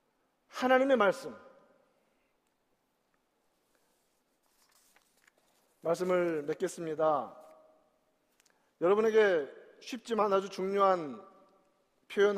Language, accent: Korean, native